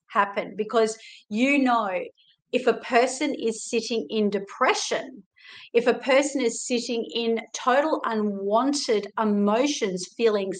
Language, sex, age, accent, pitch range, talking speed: English, female, 50-69, Australian, 210-240 Hz, 120 wpm